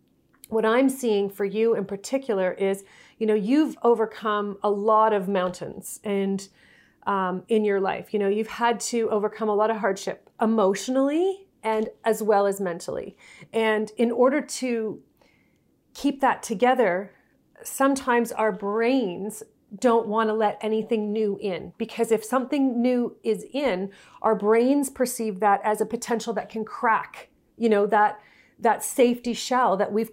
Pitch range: 205-235 Hz